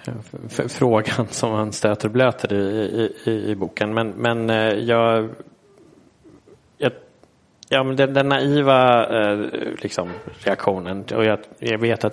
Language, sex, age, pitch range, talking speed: English, male, 30-49, 100-115 Hz, 125 wpm